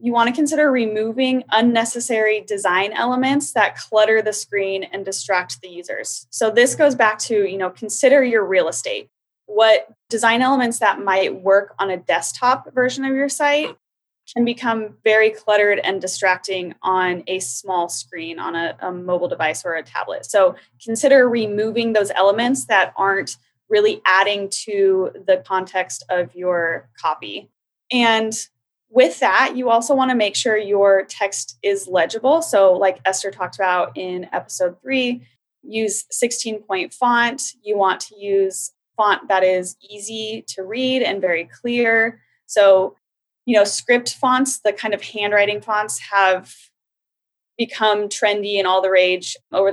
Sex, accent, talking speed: female, American, 155 wpm